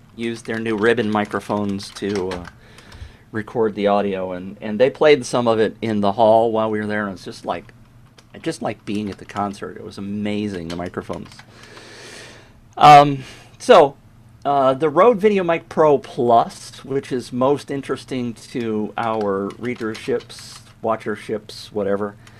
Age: 40-59